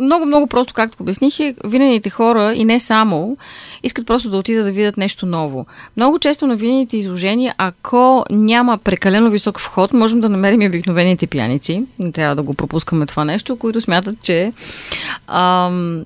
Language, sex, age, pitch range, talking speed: Bulgarian, female, 30-49, 185-245 Hz, 170 wpm